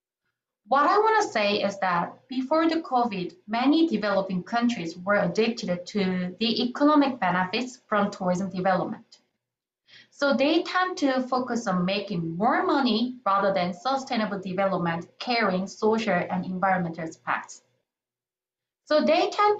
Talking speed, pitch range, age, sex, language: 130 wpm, 190-260 Hz, 20-39, female, English